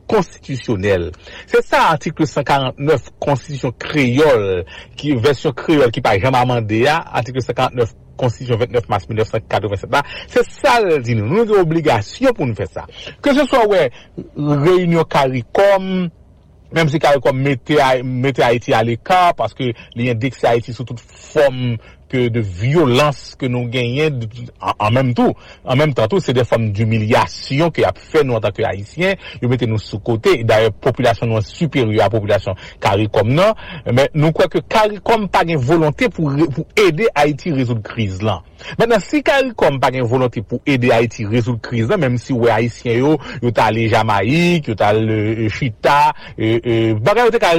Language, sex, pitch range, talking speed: English, male, 115-160 Hz, 160 wpm